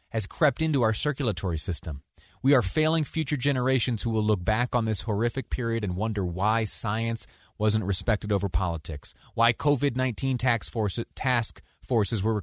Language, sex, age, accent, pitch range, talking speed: English, male, 30-49, American, 95-120 Hz, 165 wpm